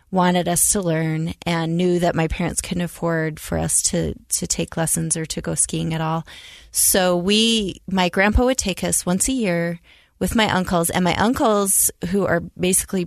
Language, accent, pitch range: English, American, 175-220 Hz